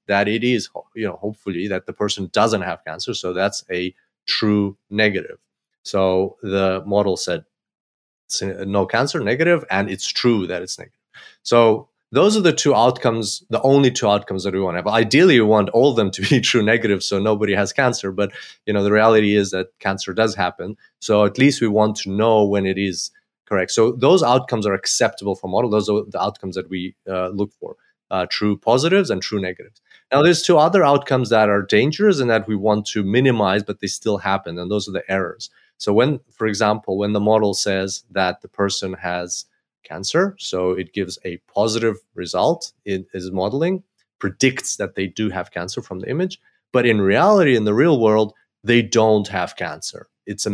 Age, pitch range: 30-49, 95-115 Hz